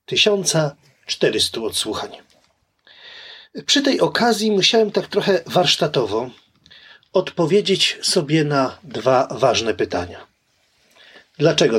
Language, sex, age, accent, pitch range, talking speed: Polish, male, 40-59, native, 130-195 Hz, 80 wpm